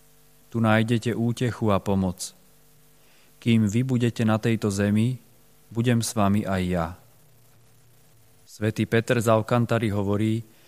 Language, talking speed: Slovak, 120 wpm